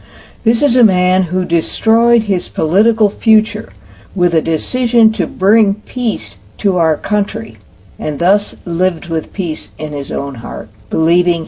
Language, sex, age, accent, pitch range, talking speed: English, female, 60-79, American, 130-195 Hz, 145 wpm